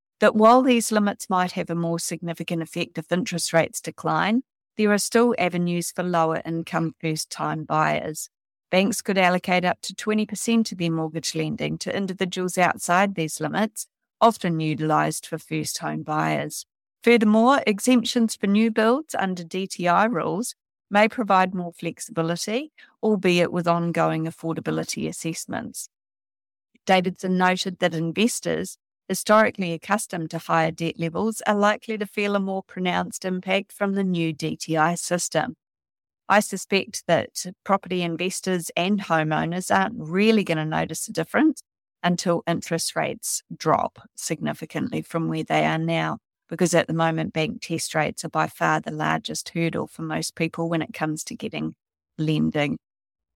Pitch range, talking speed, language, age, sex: 160-205 Hz, 145 wpm, English, 50-69, female